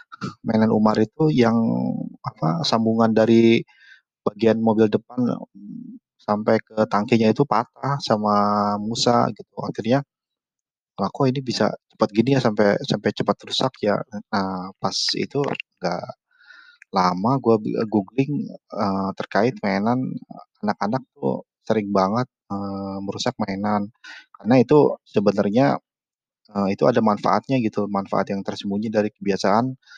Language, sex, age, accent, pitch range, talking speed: Indonesian, male, 20-39, native, 100-125 Hz, 120 wpm